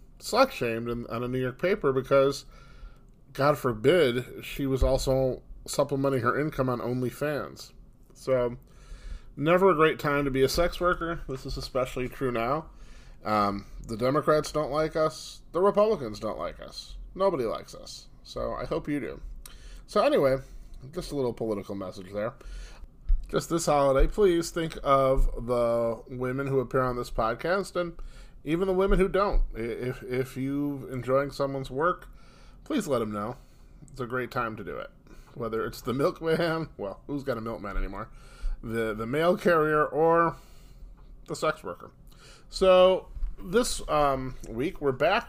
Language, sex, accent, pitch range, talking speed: English, male, American, 125-160 Hz, 160 wpm